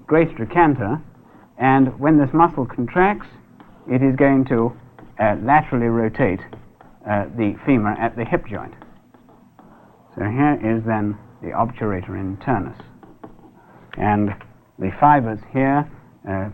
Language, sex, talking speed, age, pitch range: English, male, 120 wpm, 60-79, 110-145 Hz